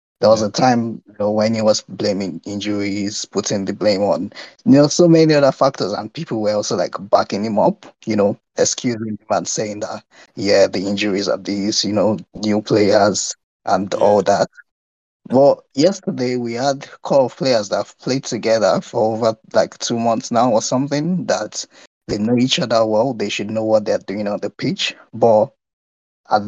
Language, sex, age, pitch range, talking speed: English, male, 20-39, 105-130 Hz, 195 wpm